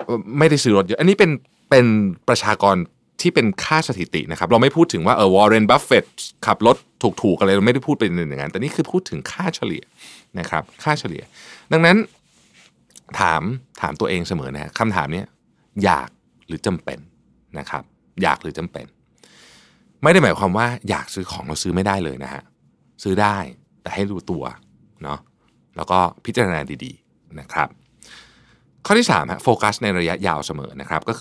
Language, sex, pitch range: Thai, male, 90-125 Hz